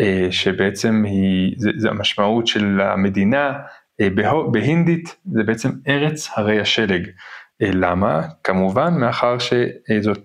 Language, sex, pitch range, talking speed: Hebrew, male, 105-145 Hz, 125 wpm